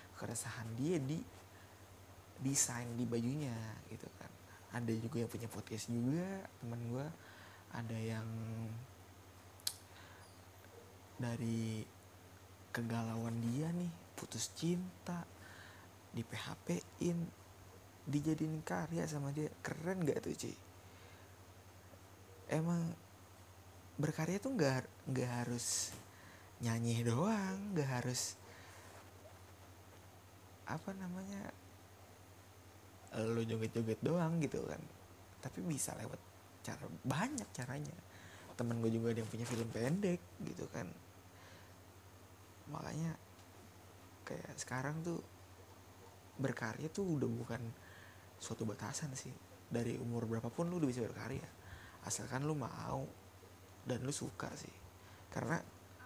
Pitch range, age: 95-125 Hz, 20-39